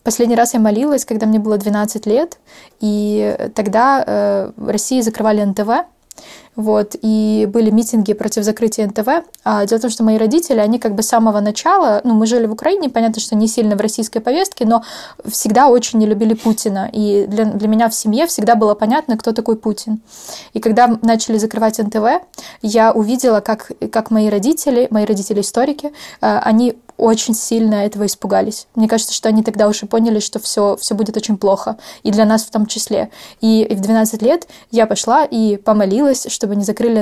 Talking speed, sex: 185 wpm, female